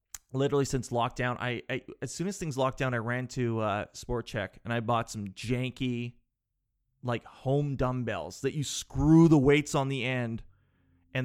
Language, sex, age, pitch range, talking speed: English, male, 30-49, 115-155 Hz, 180 wpm